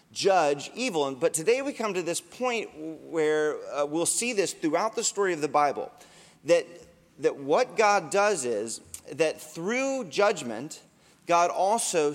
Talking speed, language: 155 wpm, English